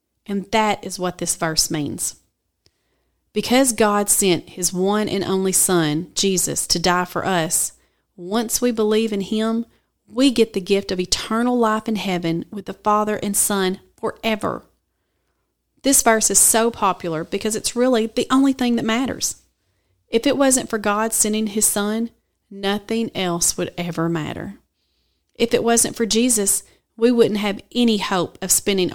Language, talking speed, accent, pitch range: English, 160 wpm, American, 180-220 Hz